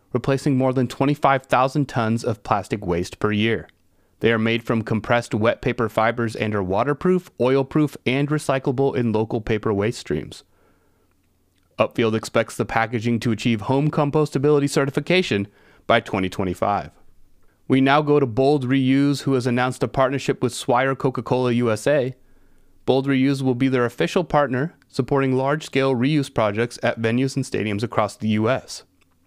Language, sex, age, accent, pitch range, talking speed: English, male, 30-49, American, 110-135 Hz, 150 wpm